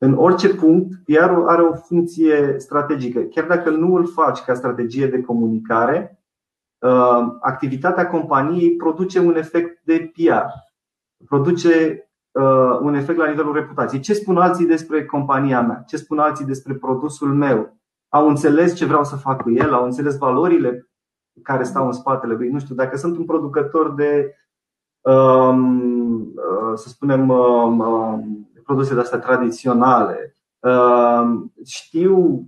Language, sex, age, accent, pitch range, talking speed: Romanian, male, 30-49, native, 130-170 Hz, 130 wpm